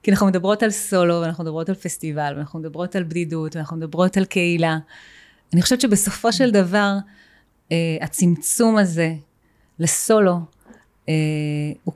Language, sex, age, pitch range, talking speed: Hebrew, female, 30-49, 160-200 Hz, 130 wpm